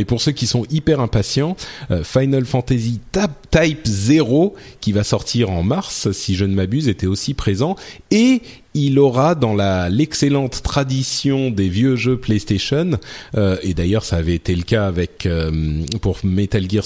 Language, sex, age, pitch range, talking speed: French, male, 40-59, 100-140 Hz, 170 wpm